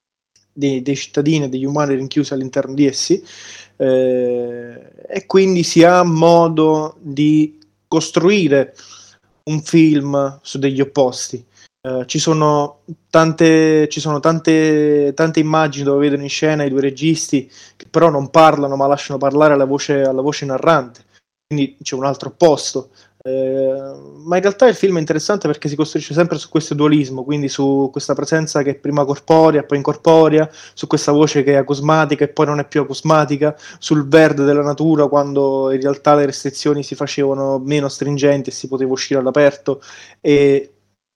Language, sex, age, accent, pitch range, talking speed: Italian, male, 20-39, native, 135-155 Hz, 155 wpm